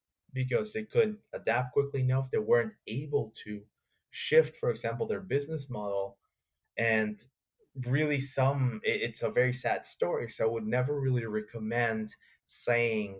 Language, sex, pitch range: English, male, 115-155 Hz